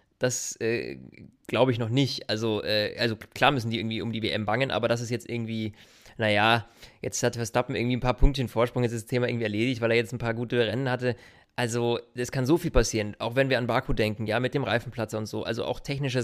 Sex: male